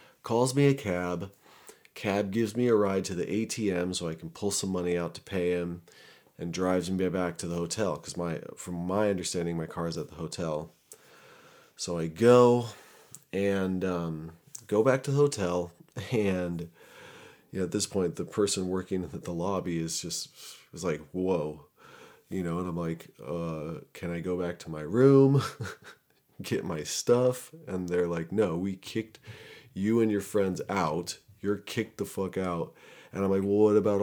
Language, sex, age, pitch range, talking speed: English, male, 30-49, 85-105 Hz, 185 wpm